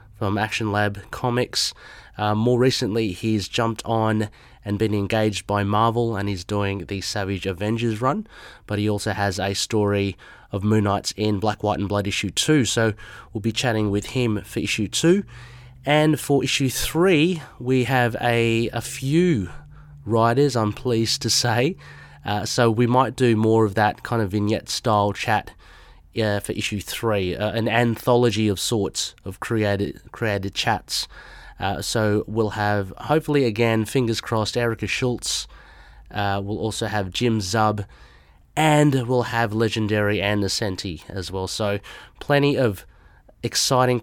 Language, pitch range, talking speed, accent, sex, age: English, 100-120 Hz, 155 wpm, Australian, male, 30-49